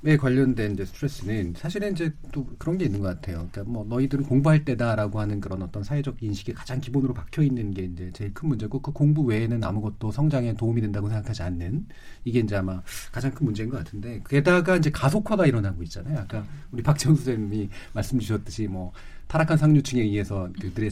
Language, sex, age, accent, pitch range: Korean, male, 40-59, native, 100-150 Hz